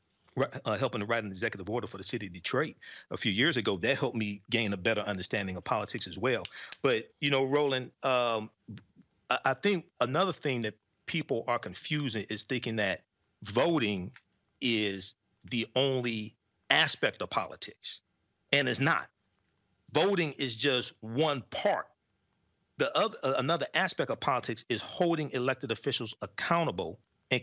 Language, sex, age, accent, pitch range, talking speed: English, male, 40-59, American, 105-135 Hz, 155 wpm